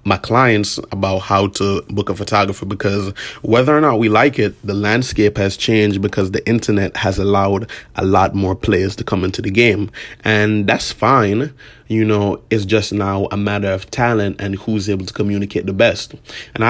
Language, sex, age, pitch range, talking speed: English, male, 20-39, 100-115 Hz, 190 wpm